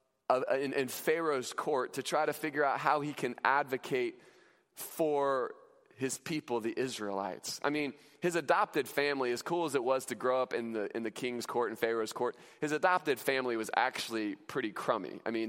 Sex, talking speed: male, 195 wpm